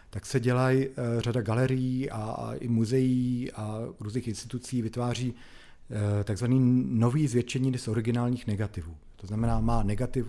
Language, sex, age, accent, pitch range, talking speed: Czech, male, 40-59, native, 105-125 Hz, 130 wpm